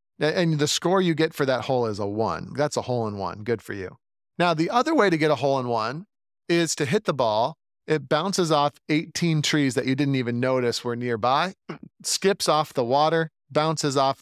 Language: English